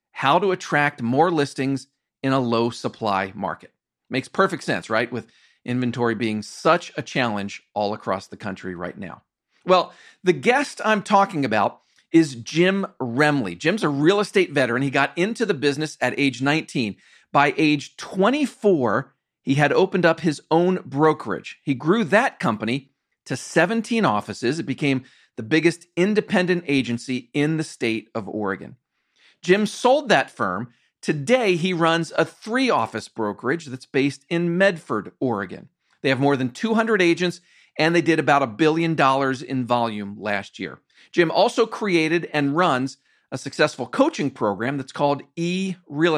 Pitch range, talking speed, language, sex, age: 125-180 Hz, 155 wpm, English, male, 40-59